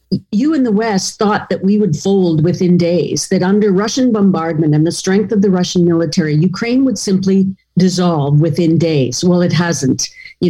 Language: English